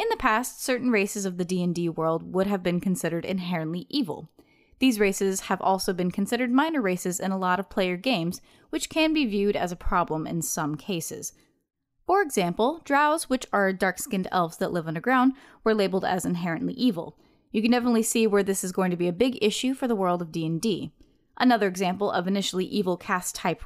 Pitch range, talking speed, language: 180-255 Hz, 200 wpm, English